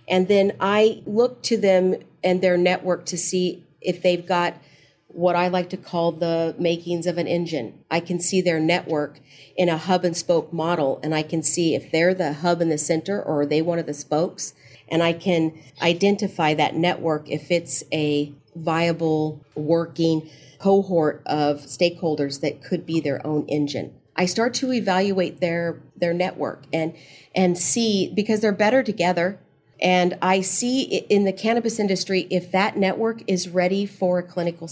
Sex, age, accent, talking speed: female, 40-59, American, 175 wpm